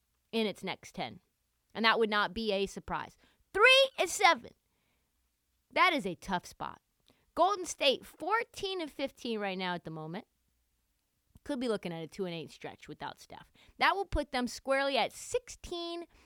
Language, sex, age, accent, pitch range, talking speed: English, female, 30-49, American, 210-300 Hz, 175 wpm